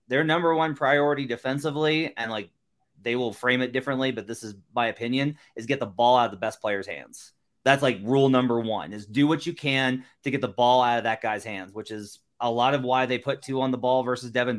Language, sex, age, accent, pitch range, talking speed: English, male, 30-49, American, 120-155 Hz, 245 wpm